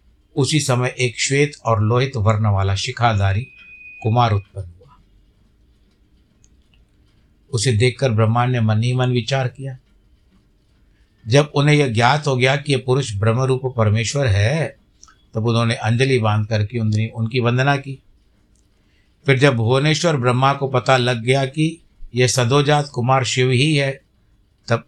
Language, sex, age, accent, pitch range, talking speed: Hindi, male, 60-79, native, 105-135 Hz, 140 wpm